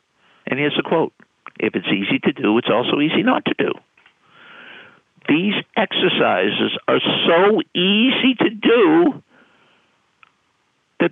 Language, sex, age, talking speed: English, male, 60-79, 125 wpm